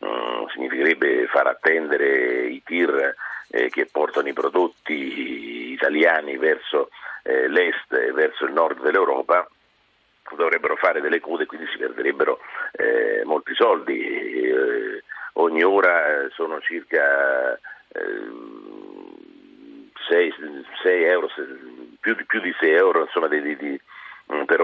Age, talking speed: 50-69, 120 wpm